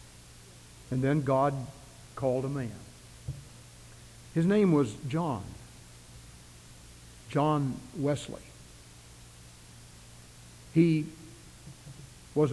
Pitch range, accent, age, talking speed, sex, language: 120-195 Hz, American, 60-79, 65 wpm, male, English